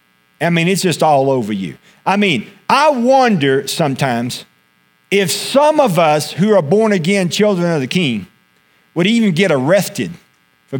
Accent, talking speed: American, 160 wpm